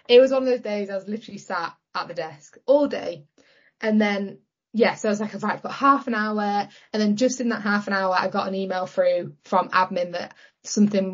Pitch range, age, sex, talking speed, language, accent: 185-250 Hz, 20-39, female, 235 wpm, English, British